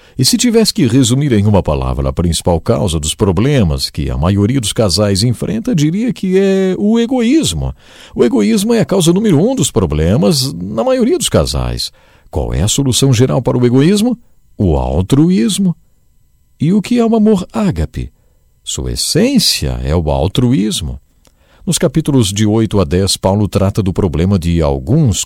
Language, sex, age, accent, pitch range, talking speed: English, male, 50-69, Brazilian, 85-140 Hz, 170 wpm